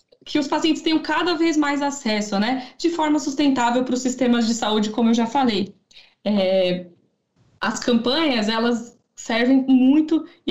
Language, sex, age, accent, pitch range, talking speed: Portuguese, female, 10-29, Brazilian, 210-255 Hz, 155 wpm